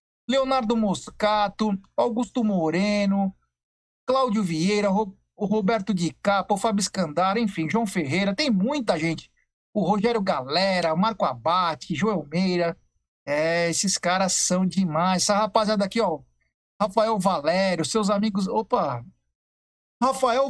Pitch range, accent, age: 180-230 Hz, Brazilian, 60-79